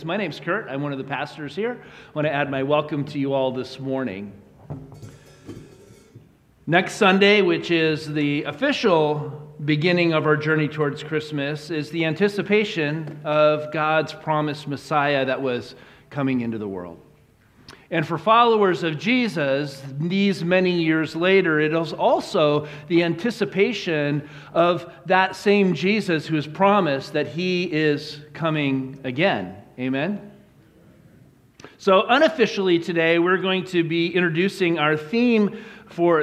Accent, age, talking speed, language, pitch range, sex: American, 40-59, 135 wpm, English, 150-185 Hz, male